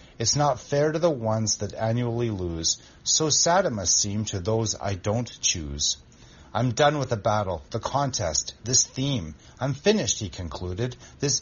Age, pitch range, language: 30-49, 90-130 Hz, English